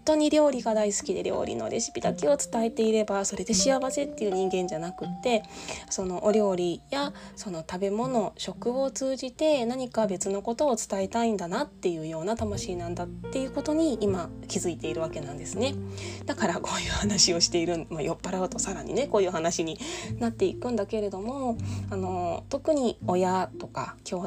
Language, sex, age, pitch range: Japanese, female, 20-39, 165-235 Hz